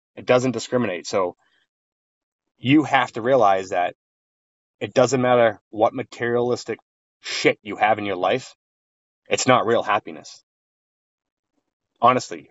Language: English